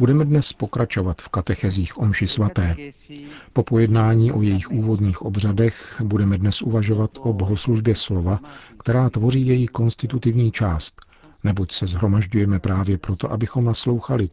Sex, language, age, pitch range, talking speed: male, Czech, 50-69, 95-115 Hz, 130 wpm